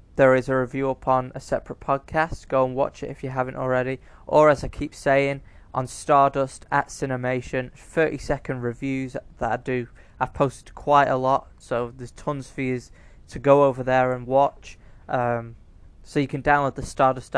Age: 20-39